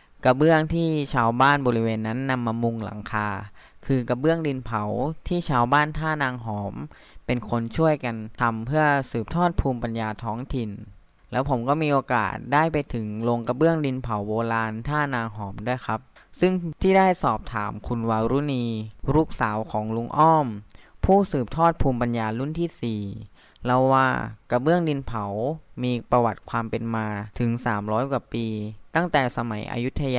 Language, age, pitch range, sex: Thai, 20-39, 110-145 Hz, female